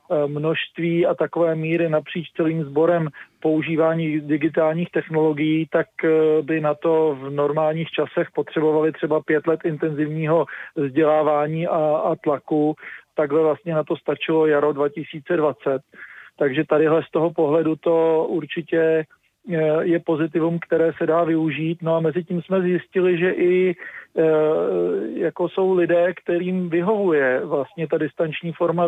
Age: 40-59